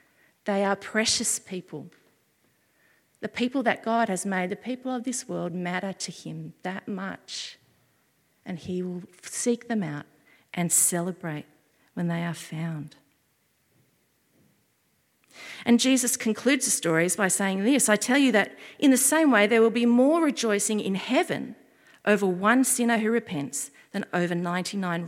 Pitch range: 170-225 Hz